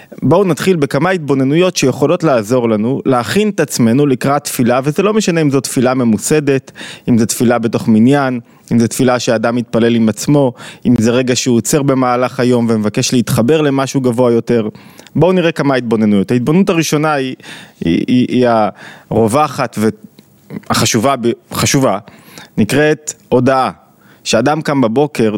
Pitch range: 115-145 Hz